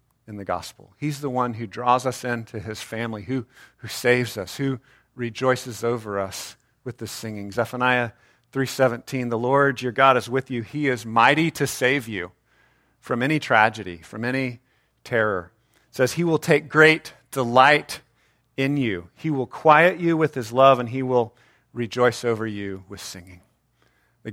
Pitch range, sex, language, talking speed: 110-135 Hz, male, English, 170 wpm